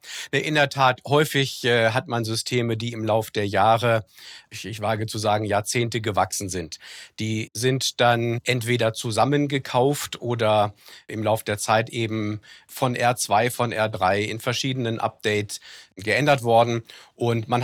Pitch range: 100-120 Hz